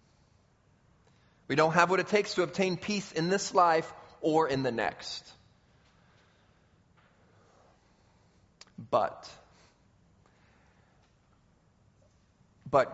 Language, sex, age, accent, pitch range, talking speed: English, male, 30-49, American, 165-215 Hz, 85 wpm